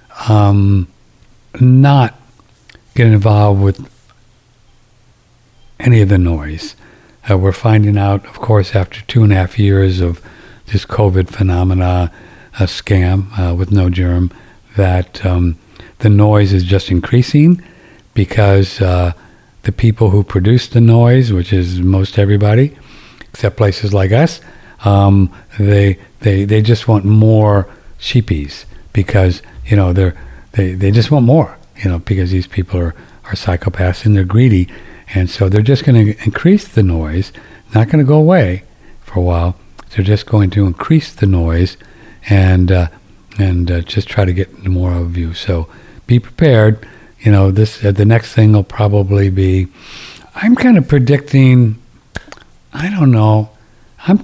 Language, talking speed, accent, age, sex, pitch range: English, 155 wpm, American, 60-79, male, 95-115 Hz